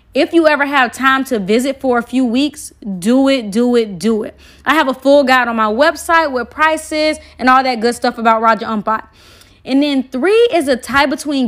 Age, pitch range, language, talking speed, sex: 20-39, 230-295 Hz, Amharic, 220 wpm, female